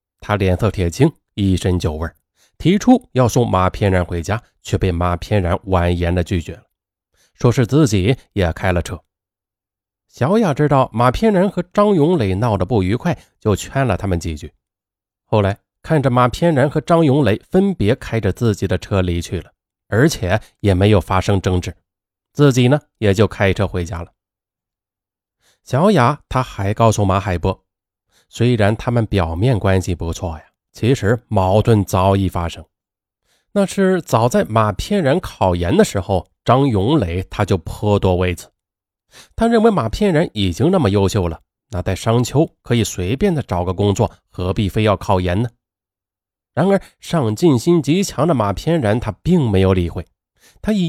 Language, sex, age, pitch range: Chinese, male, 20-39, 95-125 Hz